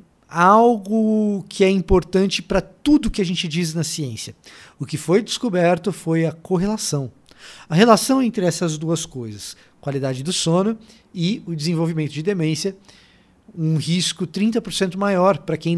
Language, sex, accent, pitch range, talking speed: Portuguese, male, Brazilian, 150-200 Hz, 150 wpm